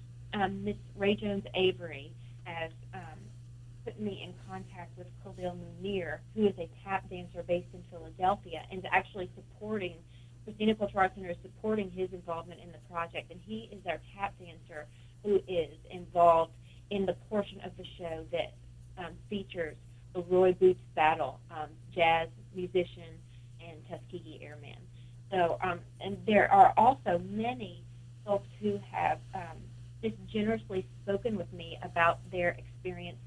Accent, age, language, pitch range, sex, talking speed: American, 30-49, English, 120-180 Hz, female, 150 wpm